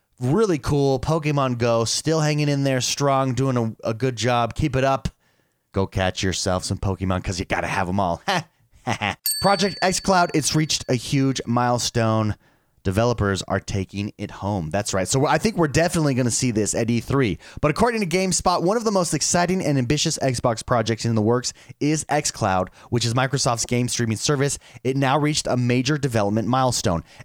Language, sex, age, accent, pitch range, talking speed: English, male, 30-49, American, 110-160 Hz, 185 wpm